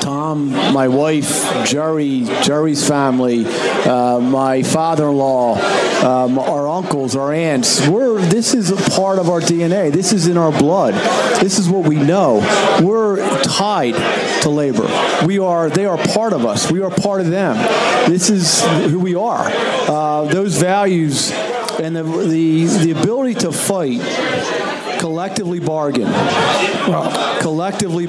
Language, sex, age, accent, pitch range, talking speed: English, male, 50-69, American, 150-190 Hz, 140 wpm